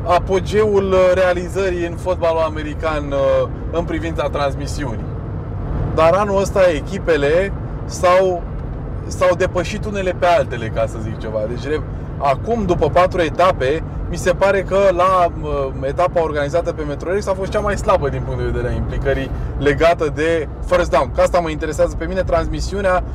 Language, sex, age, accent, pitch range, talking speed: Romanian, male, 20-39, native, 125-175 Hz, 150 wpm